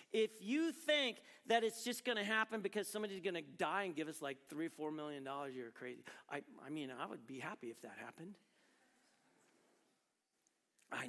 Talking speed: 185 wpm